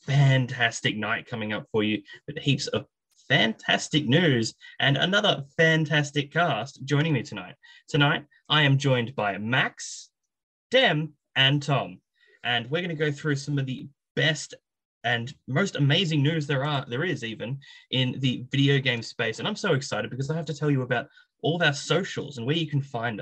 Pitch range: 130-170 Hz